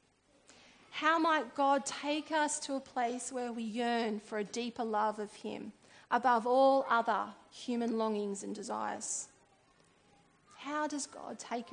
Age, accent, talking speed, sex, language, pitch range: 30-49, Australian, 145 wpm, female, English, 215-265 Hz